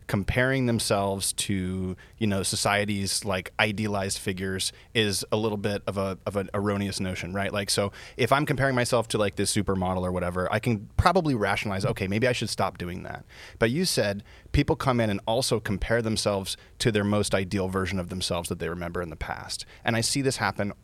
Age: 30-49